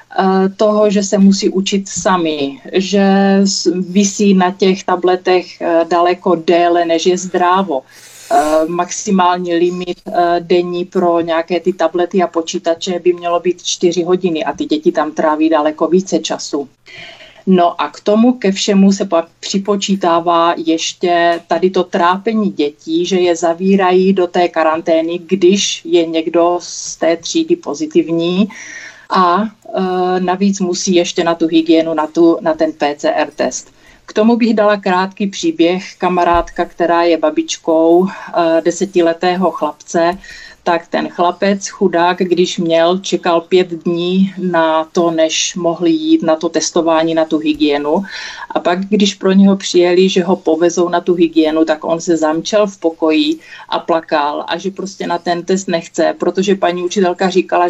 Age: 30-49